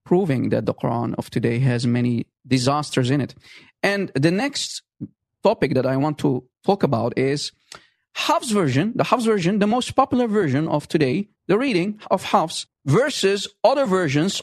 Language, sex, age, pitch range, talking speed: English, male, 40-59, 145-205 Hz, 165 wpm